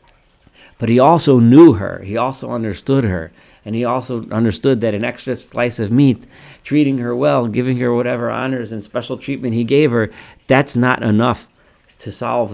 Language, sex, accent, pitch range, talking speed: English, male, American, 105-135 Hz, 175 wpm